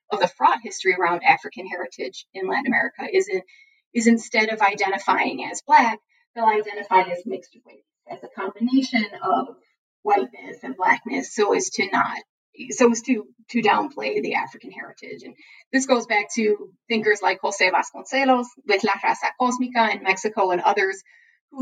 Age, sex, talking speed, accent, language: 30-49, female, 165 wpm, American, English